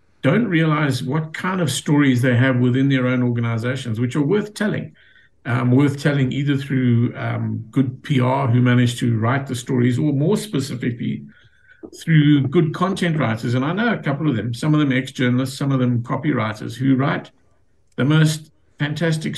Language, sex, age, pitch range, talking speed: English, male, 50-69, 125-145 Hz, 175 wpm